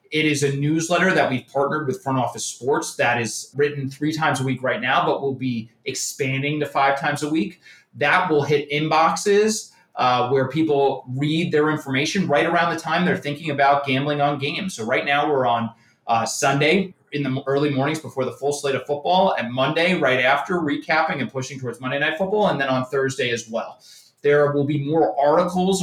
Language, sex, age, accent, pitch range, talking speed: English, male, 30-49, American, 130-160 Hz, 205 wpm